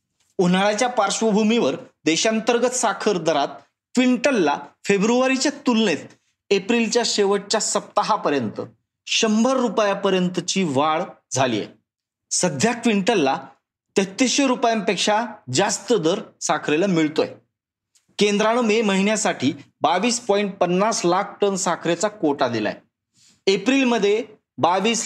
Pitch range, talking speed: 170-220 Hz, 90 wpm